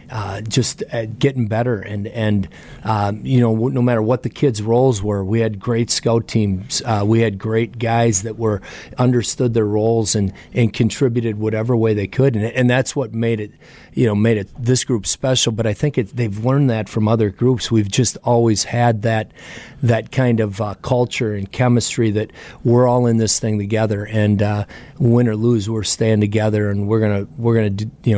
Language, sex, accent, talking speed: English, male, American, 200 wpm